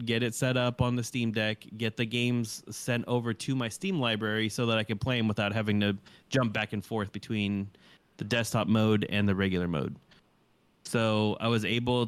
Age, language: 30-49, English